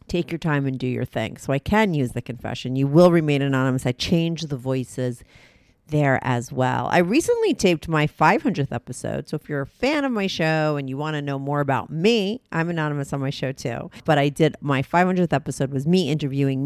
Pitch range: 140-195 Hz